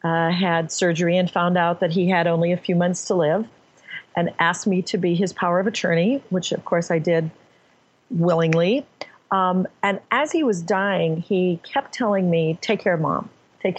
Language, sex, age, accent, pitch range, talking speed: English, female, 40-59, American, 160-195 Hz, 195 wpm